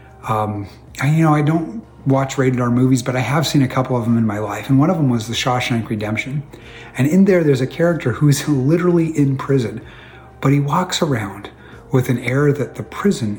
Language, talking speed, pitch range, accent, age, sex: English, 215 wpm, 115-140 Hz, American, 30-49, male